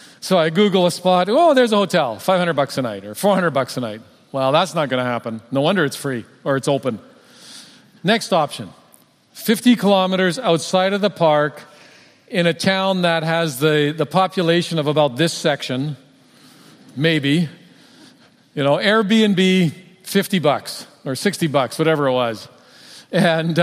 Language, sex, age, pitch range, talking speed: English, male, 40-59, 145-200 Hz, 165 wpm